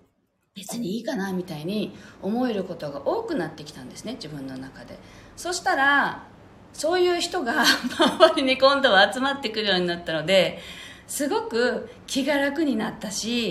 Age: 40-59